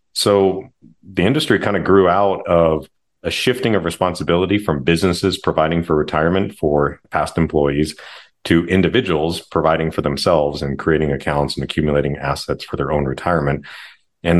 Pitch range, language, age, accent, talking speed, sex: 75-90 Hz, English, 40-59, American, 150 wpm, male